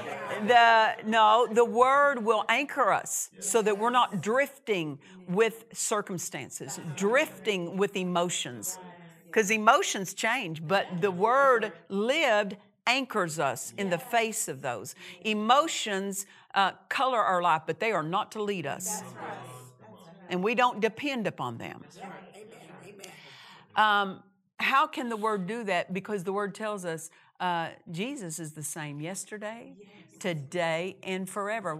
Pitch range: 180-230 Hz